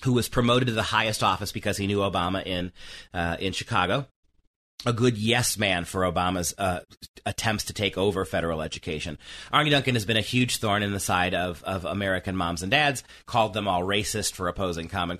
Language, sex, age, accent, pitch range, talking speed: English, male, 30-49, American, 95-125 Hz, 195 wpm